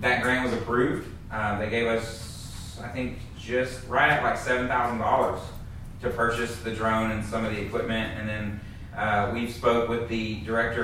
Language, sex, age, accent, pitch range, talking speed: English, male, 30-49, American, 110-125 Hz, 185 wpm